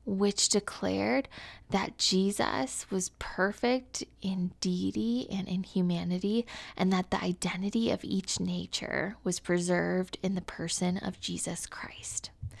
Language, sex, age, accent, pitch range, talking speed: English, female, 20-39, American, 180-220 Hz, 125 wpm